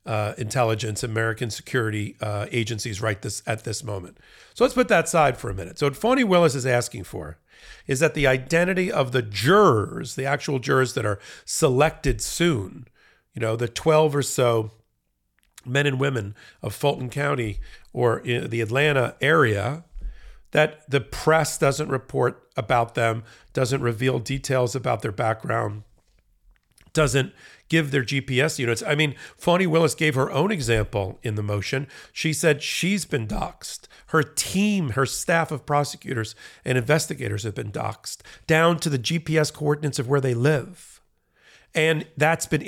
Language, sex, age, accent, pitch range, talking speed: English, male, 50-69, American, 115-155 Hz, 160 wpm